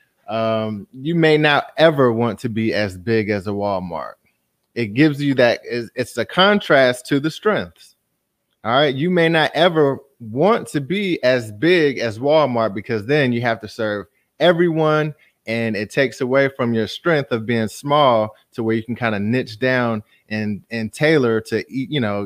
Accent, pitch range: American, 115-155 Hz